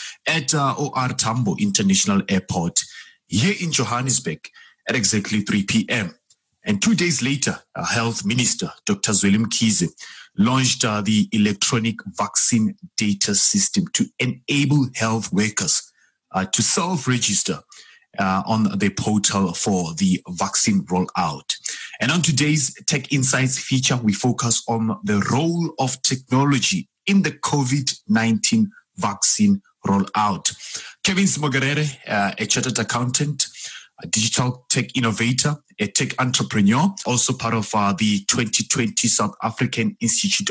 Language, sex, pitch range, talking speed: English, male, 115-160 Hz, 125 wpm